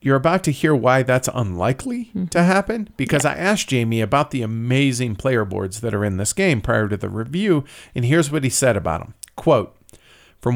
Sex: male